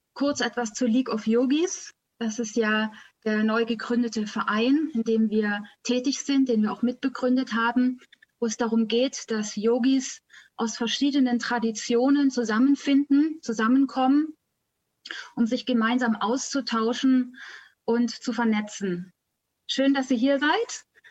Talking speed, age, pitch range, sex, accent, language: 130 wpm, 20-39, 225-275 Hz, female, German, German